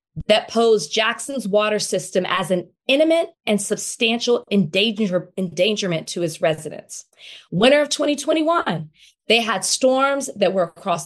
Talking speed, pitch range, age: 125 wpm, 185-240 Hz, 20-39